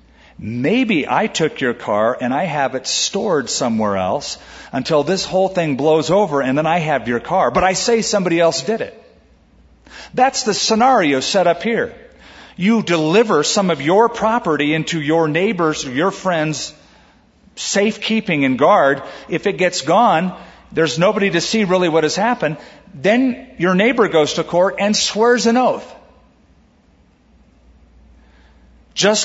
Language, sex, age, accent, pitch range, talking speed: English, male, 40-59, American, 155-215 Hz, 150 wpm